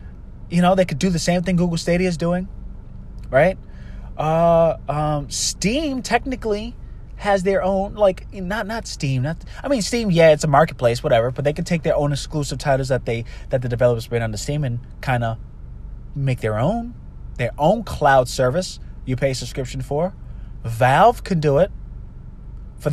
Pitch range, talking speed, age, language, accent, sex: 135-190 Hz, 185 wpm, 20-39, English, American, male